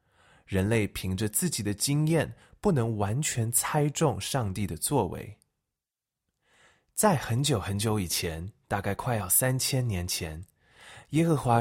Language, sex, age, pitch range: Chinese, male, 20-39, 100-140 Hz